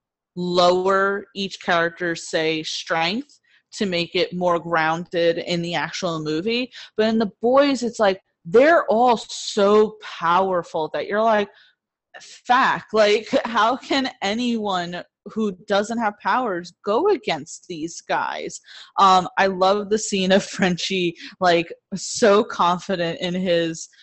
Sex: female